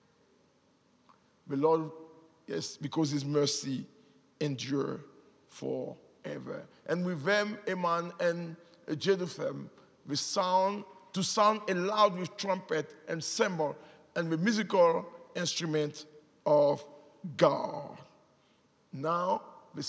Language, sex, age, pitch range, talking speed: English, male, 50-69, 160-225 Hz, 95 wpm